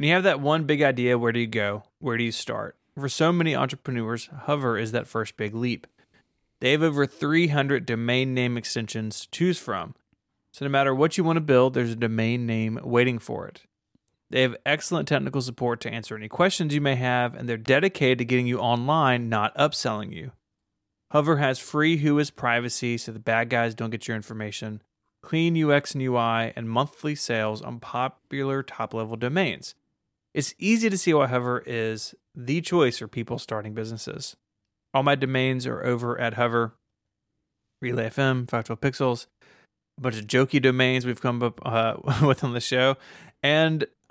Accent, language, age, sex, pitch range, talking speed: American, English, 30-49, male, 115-140 Hz, 180 wpm